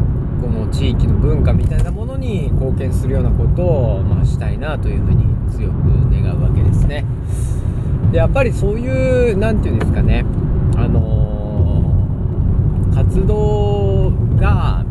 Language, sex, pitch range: Japanese, male, 90-115 Hz